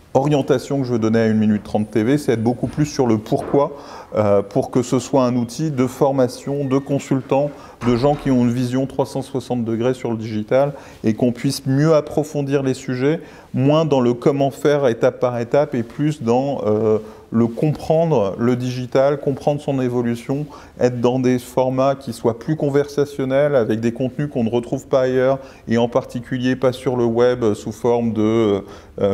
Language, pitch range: French, 115-135 Hz